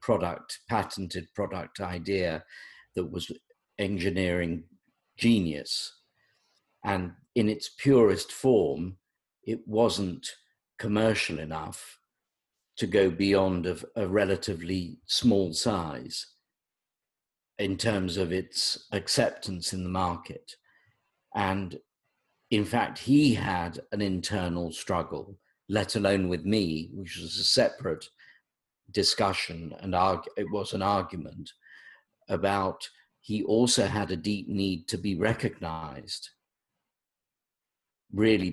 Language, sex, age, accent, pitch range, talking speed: English, male, 50-69, British, 90-110 Hz, 105 wpm